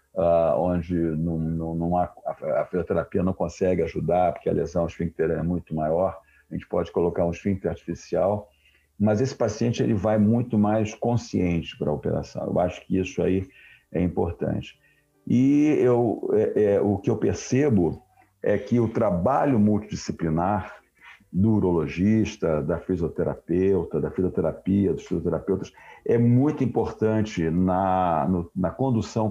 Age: 50-69